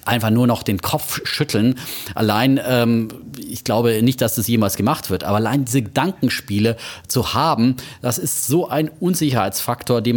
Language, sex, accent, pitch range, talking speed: German, male, German, 105-135 Hz, 165 wpm